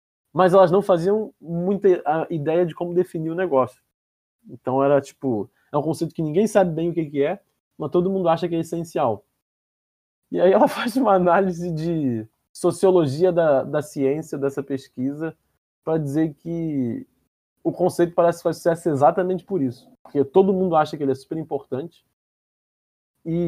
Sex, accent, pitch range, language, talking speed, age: male, Brazilian, 140-185 Hz, Portuguese, 170 wpm, 20-39